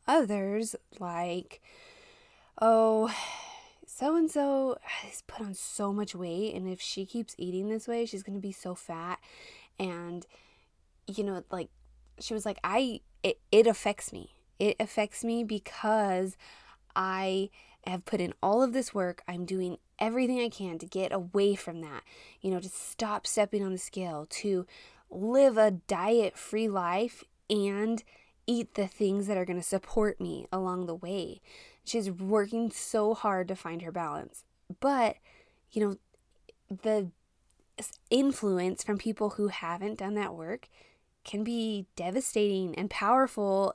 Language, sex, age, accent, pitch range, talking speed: English, female, 20-39, American, 190-230 Hz, 150 wpm